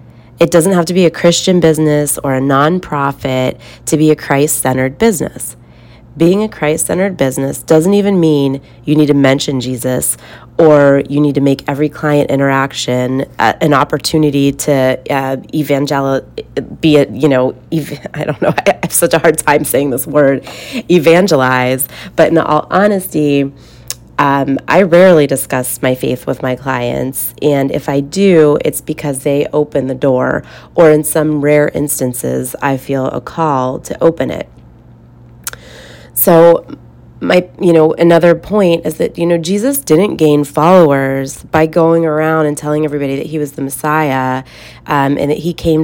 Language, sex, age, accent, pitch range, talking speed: English, female, 30-49, American, 135-165 Hz, 165 wpm